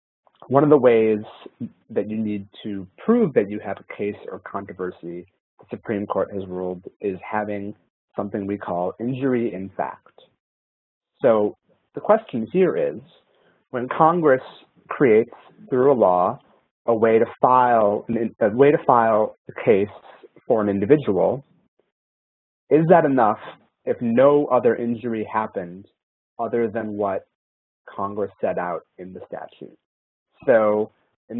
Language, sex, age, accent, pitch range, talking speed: English, male, 30-49, American, 95-120 Hz, 140 wpm